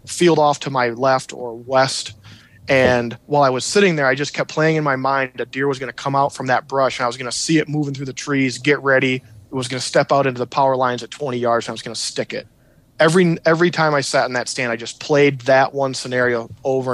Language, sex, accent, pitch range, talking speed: English, male, American, 125-145 Hz, 275 wpm